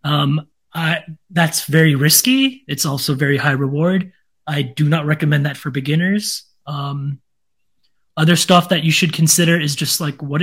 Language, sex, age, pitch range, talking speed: English, male, 20-39, 145-170 Hz, 160 wpm